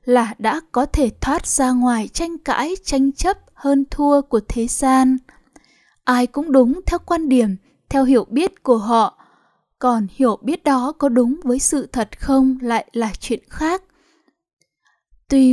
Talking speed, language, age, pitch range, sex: 160 wpm, Vietnamese, 10-29, 240-290 Hz, female